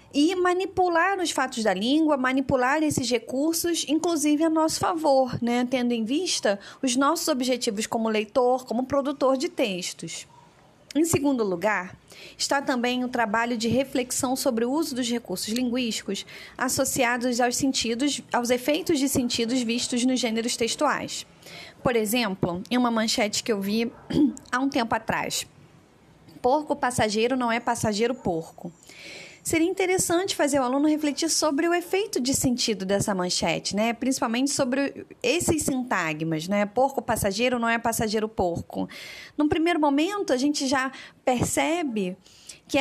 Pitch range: 220-290 Hz